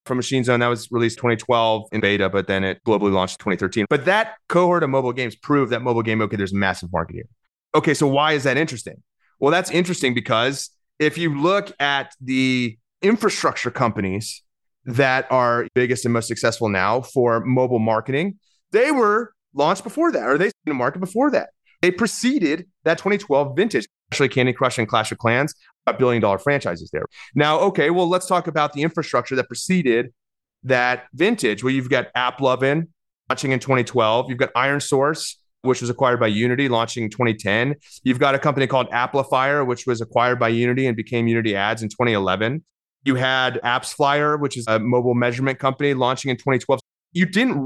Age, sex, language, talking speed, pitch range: 30-49, male, English, 190 wpm, 115-150 Hz